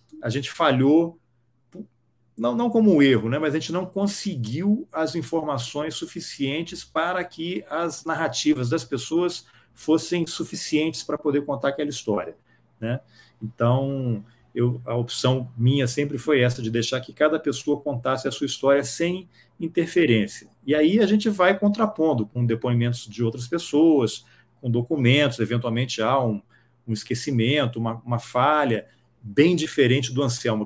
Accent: Brazilian